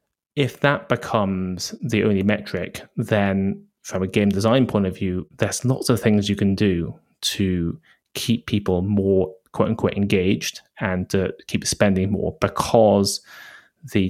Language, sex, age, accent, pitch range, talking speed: English, male, 20-39, British, 95-115 Hz, 150 wpm